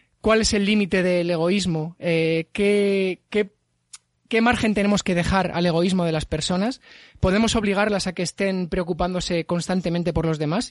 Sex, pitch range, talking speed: male, 175-220 Hz, 150 wpm